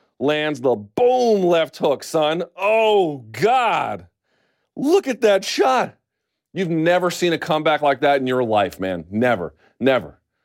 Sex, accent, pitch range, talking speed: male, American, 105-150 Hz, 145 wpm